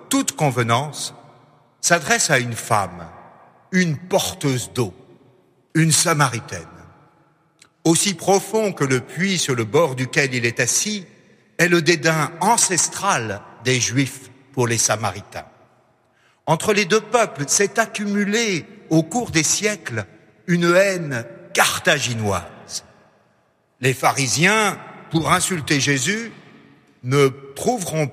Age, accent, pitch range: 60-79, French, 125-180 Hz